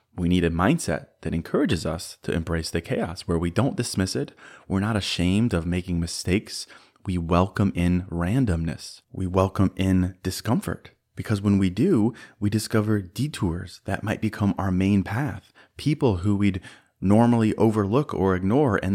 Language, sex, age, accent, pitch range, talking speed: English, male, 30-49, American, 85-105 Hz, 160 wpm